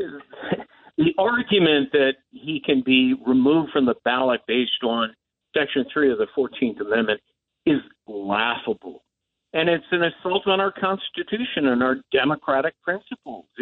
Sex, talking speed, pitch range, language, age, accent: male, 135 wpm, 130-180 Hz, English, 60-79, American